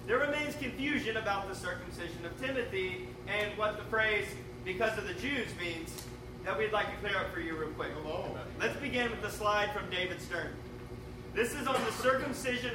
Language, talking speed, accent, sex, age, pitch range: English, 190 wpm, American, male, 30-49, 195-265 Hz